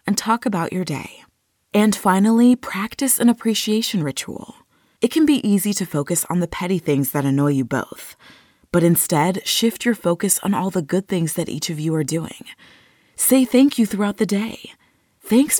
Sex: female